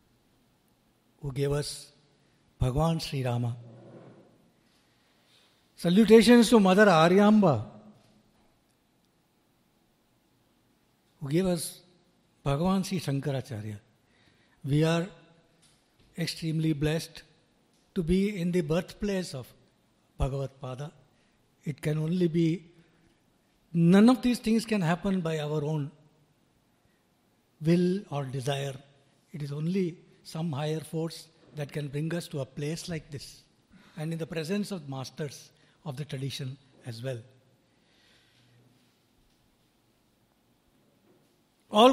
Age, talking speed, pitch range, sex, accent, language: 60-79, 100 wpm, 140-210 Hz, male, Indian, English